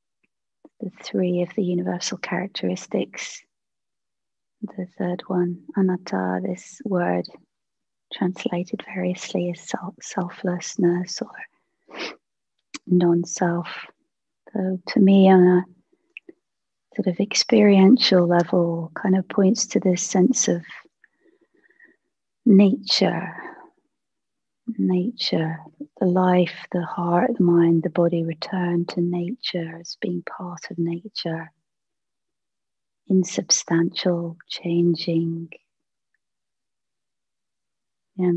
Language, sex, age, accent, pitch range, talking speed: English, female, 30-49, British, 170-205 Hz, 85 wpm